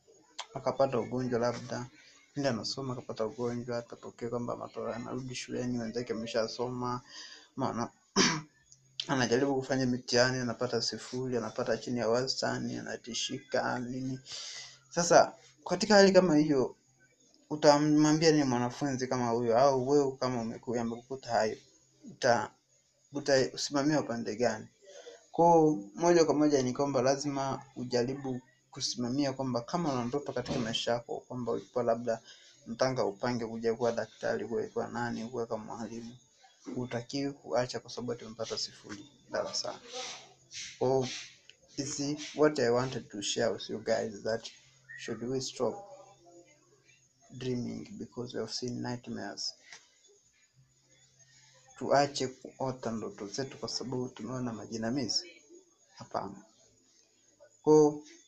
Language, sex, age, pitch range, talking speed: Swahili, male, 20-39, 120-140 Hz, 115 wpm